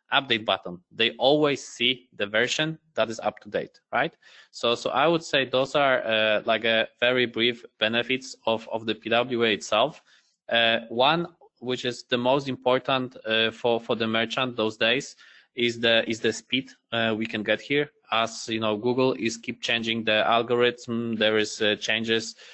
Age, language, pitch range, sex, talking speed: 20-39, English, 110-125 Hz, male, 180 wpm